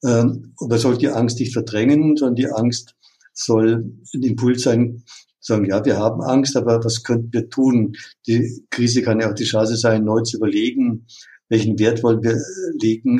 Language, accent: German, German